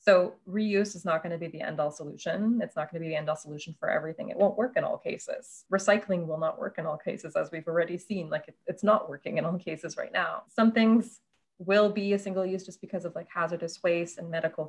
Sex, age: female, 20-39